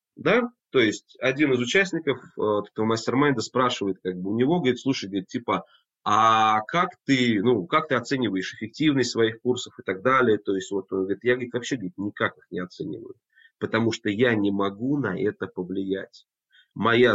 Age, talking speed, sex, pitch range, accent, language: 30-49, 185 wpm, male, 105-140 Hz, native, Russian